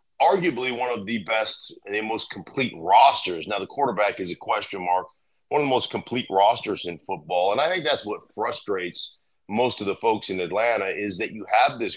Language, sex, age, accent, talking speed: English, male, 40-59, American, 210 wpm